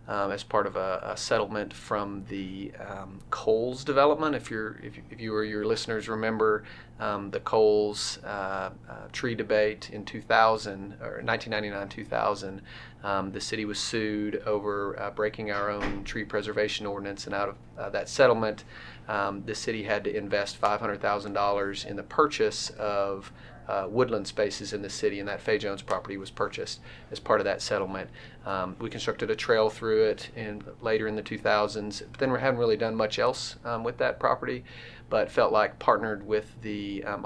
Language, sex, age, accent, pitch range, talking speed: English, male, 30-49, American, 100-110 Hz, 180 wpm